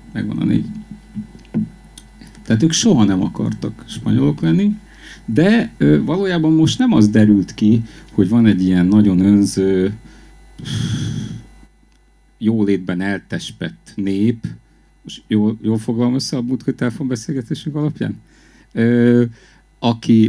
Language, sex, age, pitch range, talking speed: Hungarian, male, 50-69, 100-140 Hz, 110 wpm